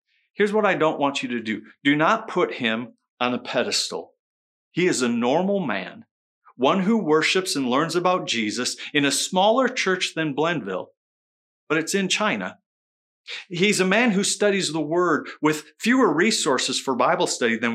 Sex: male